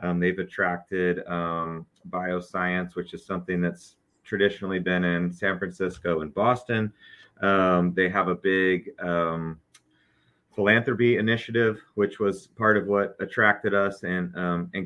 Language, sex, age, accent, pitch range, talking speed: English, male, 30-49, American, 90-105 Hz, 135 wpm